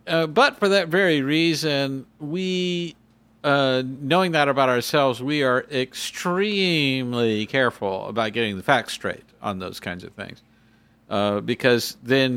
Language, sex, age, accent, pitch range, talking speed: English, male, 50-69, American, 110-140 Hz, 140 wpm